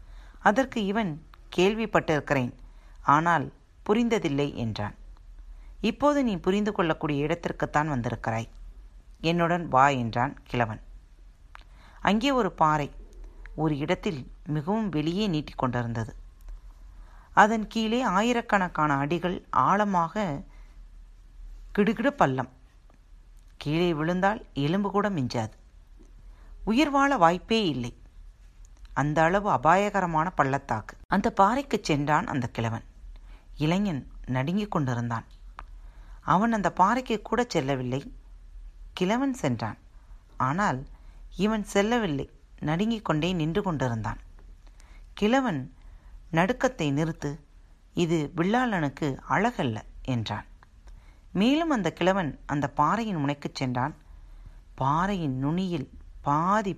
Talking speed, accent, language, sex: 90 wpm, native, Tamil, female